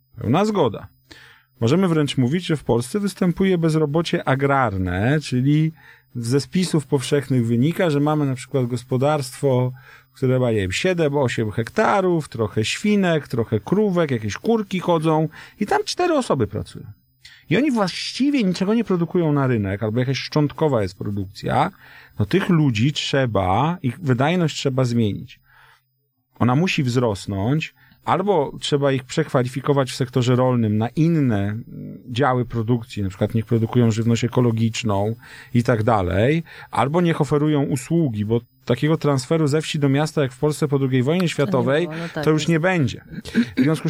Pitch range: 120-160 Hz